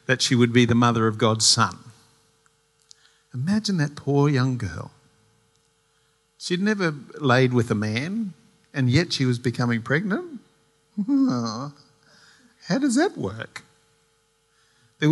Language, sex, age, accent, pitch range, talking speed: English, male, 50-69, Australian, 125-190 Hz, 125 wpm